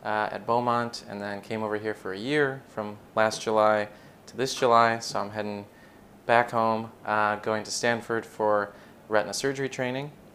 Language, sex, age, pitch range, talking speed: English, male, 20-39, 105-115 Hz, 175 wpm